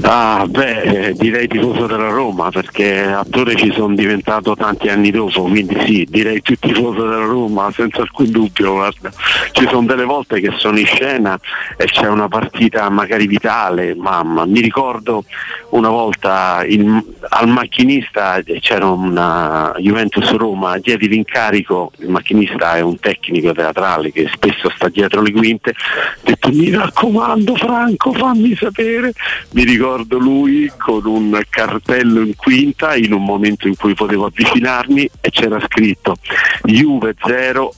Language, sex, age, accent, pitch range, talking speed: Italian, male, 50-69, native, 100-125 Hz, 145 wpm